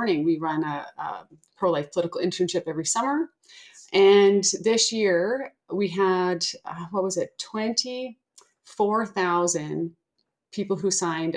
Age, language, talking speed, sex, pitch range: 30-49, English, 115 wpm, female, 170-215 Hz